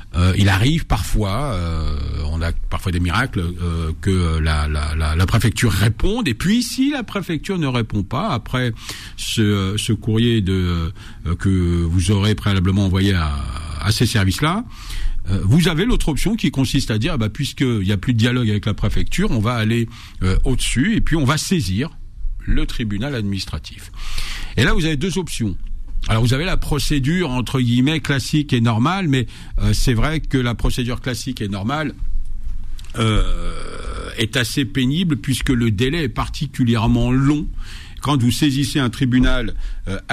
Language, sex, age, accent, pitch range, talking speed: French, male, 50-69, French, 100-130 Hz, 160 wpm